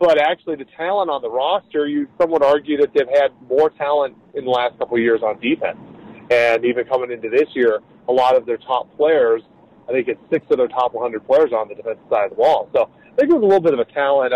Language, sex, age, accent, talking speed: English, male, 40-59, American, 260 wpm